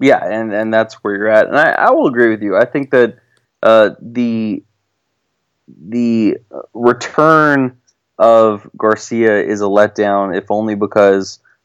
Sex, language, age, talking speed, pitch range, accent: male, English, 20-39, 150 wpm, 100-115 Hz, American